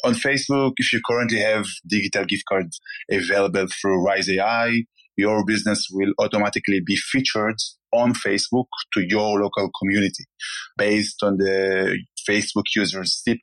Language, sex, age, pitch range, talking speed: English, male, 20-39, 95-110 Hz, 140 wpm